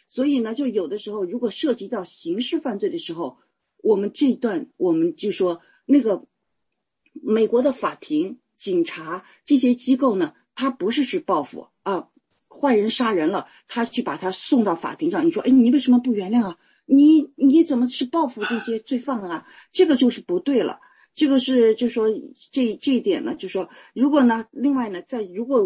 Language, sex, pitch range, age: English, female, 215-310 Hz, 50-69